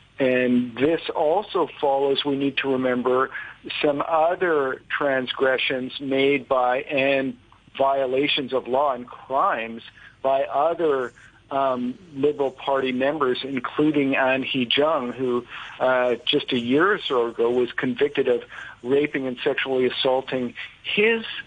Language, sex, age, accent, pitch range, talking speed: English, male, 50-69, American, 120-140 Hz, 125 wpm